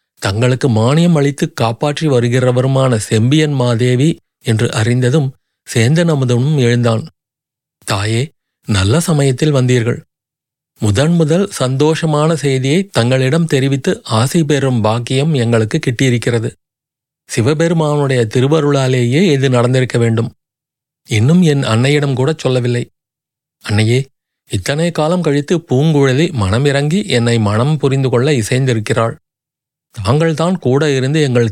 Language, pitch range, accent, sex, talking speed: Tamil, 120-150 Hz, native, male, 95 wpm